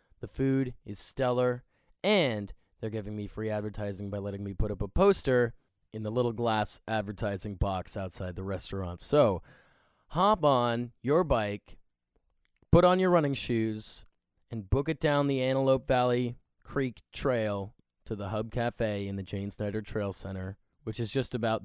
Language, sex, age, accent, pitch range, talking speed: English, male, 20-39, American, 100-125 Hz, 165 wpm